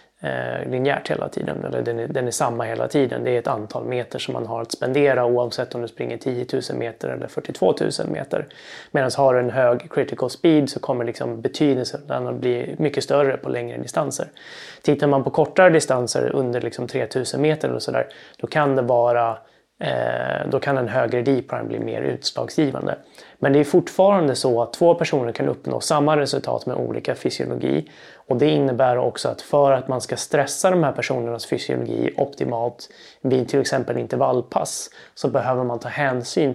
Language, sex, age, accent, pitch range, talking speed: Swedish, male, 20-39, native, 120-145 Hz, 185 wpm